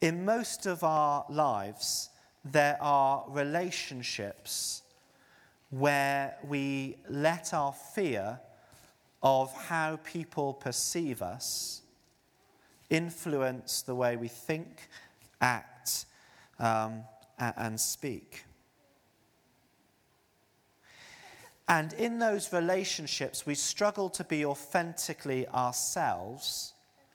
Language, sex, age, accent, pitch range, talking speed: English, male, 30-49, British, 125-165 Hz, 85 wpm